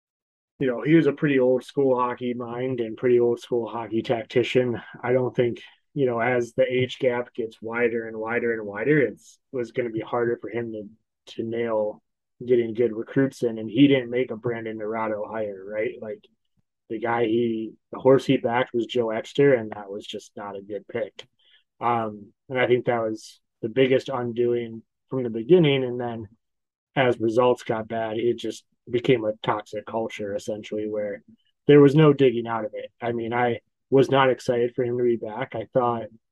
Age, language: 20-39, English